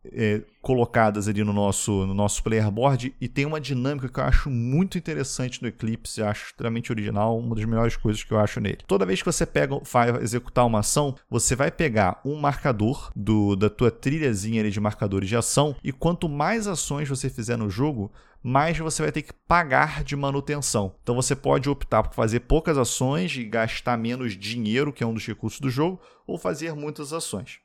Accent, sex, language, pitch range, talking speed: Brazilian, male, Portuguese, 115-150 Hz, 205 wpm